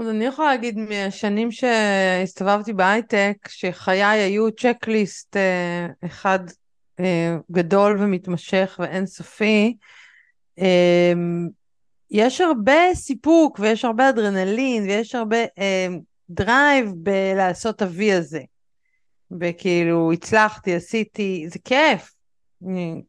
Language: Hebrew